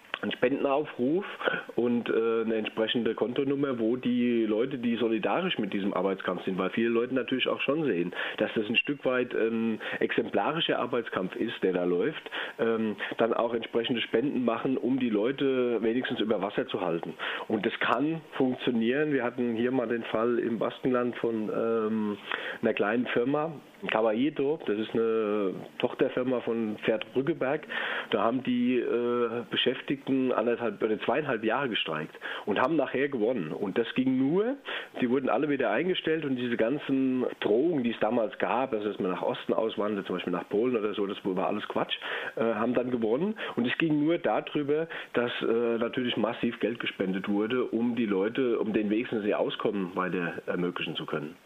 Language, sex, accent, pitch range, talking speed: German, male, German, 115-135 Hz, 170 wpm